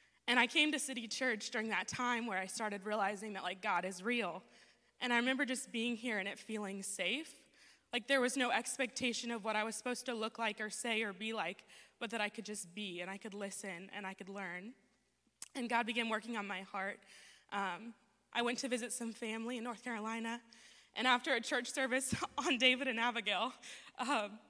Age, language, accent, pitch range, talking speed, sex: 20-39, English, American, 200-245 Hz, 215 wpm, female